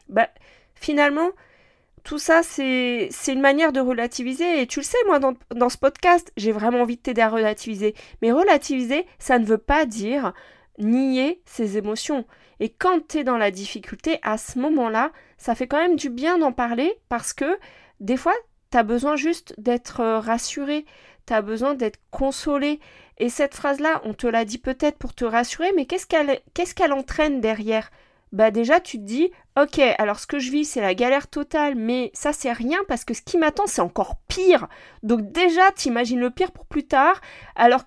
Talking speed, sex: 195 wpm, female